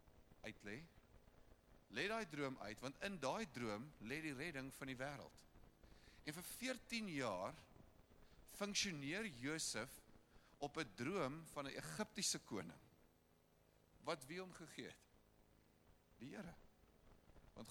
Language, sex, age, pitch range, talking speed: English, male, 50-69, 105-160 Hz, 115 wpm